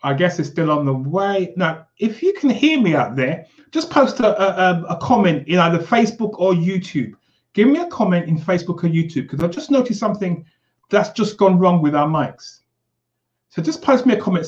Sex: male